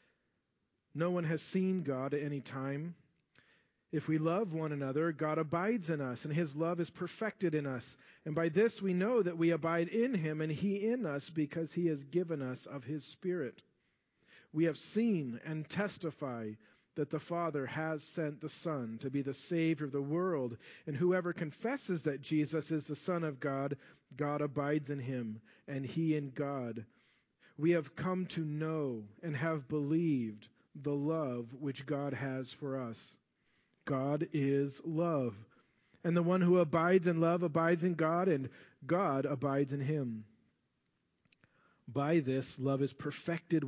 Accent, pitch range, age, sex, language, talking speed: American, 140-170 Hz, 40-59, male, English, 165 wpm